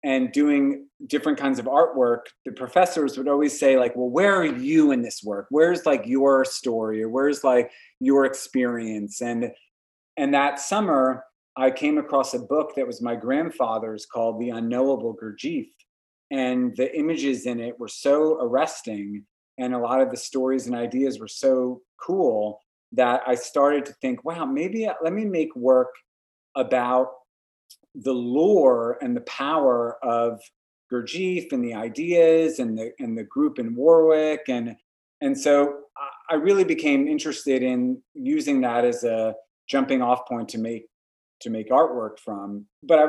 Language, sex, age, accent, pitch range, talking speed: English, male, 30-49, American, 120-165 Hz, 160 wpm